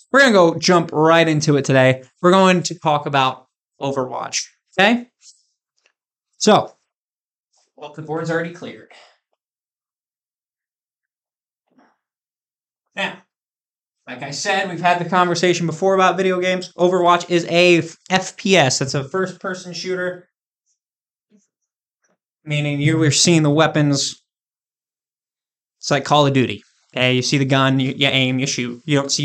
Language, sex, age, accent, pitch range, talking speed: English, male, 20-39, American, 135-180 Hz, 135 wpm